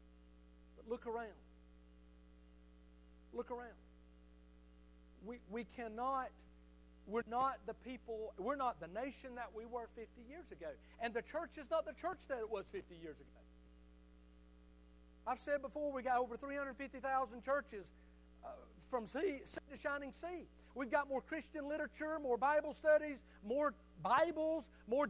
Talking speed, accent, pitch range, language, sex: 150 wpm, American, 190-320 Hz, English, male